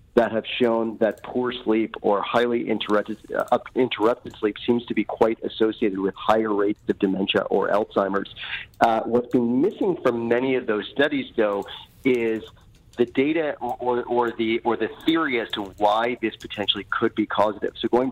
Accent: American